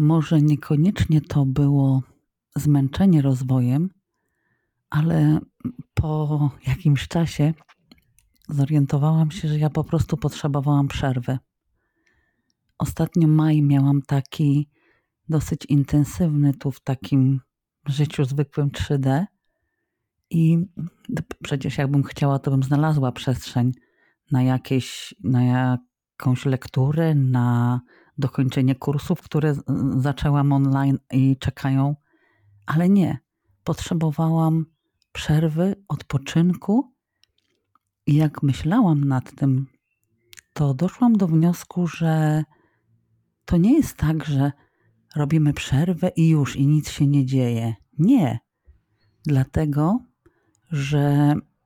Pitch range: 135-160 Hz